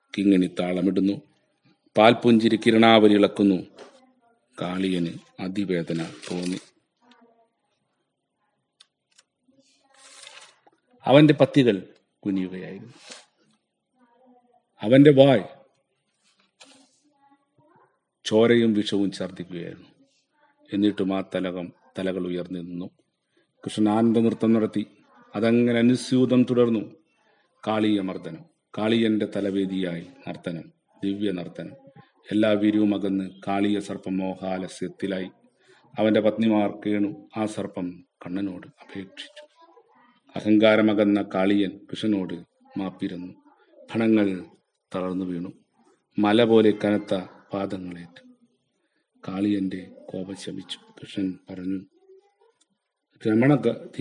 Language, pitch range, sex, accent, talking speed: Malayalam, 95-125 Hz, male, native, 70 wpm